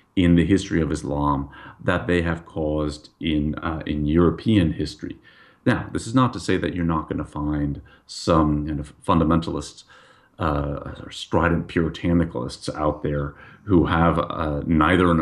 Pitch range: 75-90 Hz